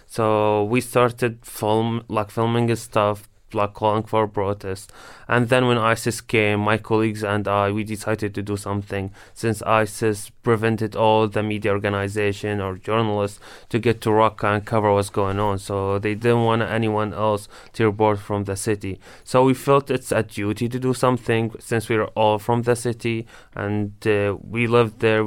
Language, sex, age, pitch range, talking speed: English, male, 20-39, 105-115 Hz, 180 wpm